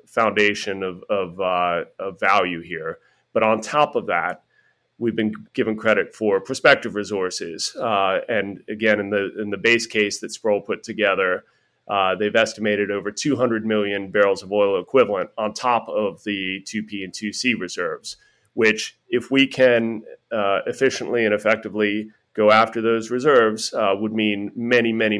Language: English